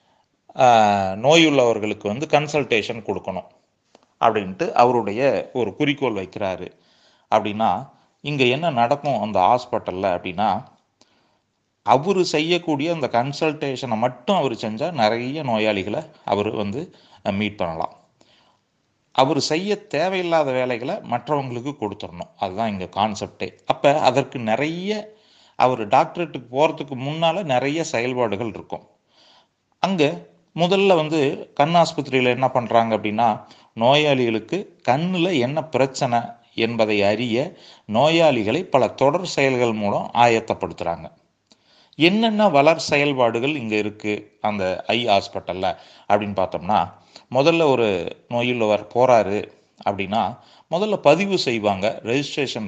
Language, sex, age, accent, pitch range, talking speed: Tamil, male, 30-49, native, 110-155 Hz, 100 wpm